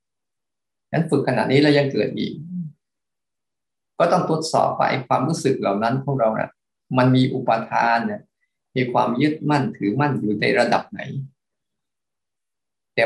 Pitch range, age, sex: 120-145 Hz, 20-39, male